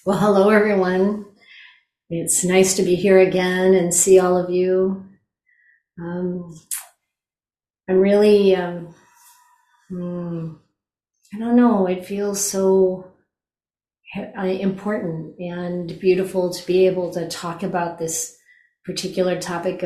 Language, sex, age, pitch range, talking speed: English, female, 30-49, 175-200 Hz, 110 wpm